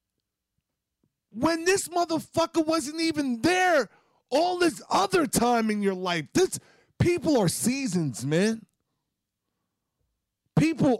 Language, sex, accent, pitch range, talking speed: English, male, American, 200-300 Hz, 105 wpm